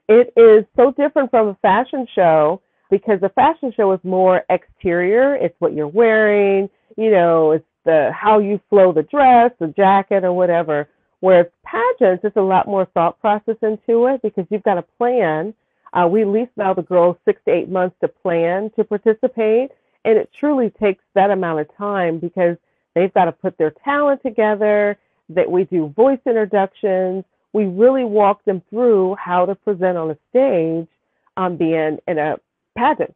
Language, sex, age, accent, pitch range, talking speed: English, female, 40-59, American, 170-220 Hz, 180 wpm